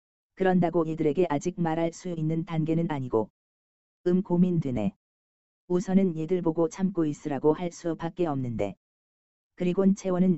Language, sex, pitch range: Korean, female, 145-180 Hz